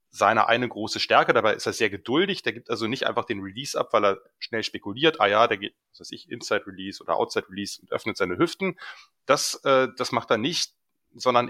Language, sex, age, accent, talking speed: German, male, 30-49, German, 220 wpm